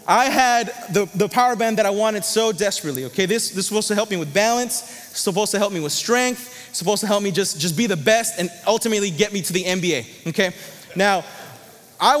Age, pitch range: 20-39, 180-235 Hz